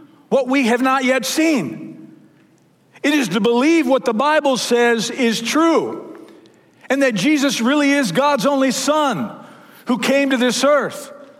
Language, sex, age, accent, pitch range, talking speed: English, male, 50-69, American, 195-275 Hz, 155 wpm